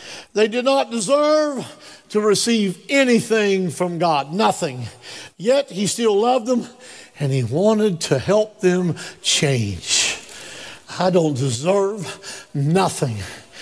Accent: American